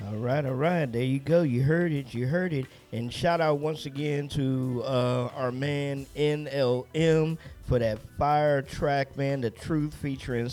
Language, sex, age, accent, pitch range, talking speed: English, male, 40-59, American, 125-145 Hz, 175 wpm